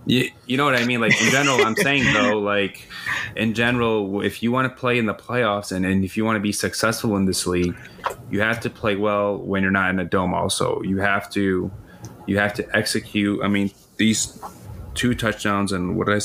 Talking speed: 225 wpm